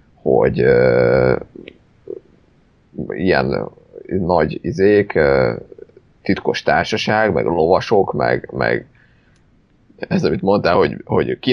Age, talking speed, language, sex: 30-49, 95 wpm, Hungarian, male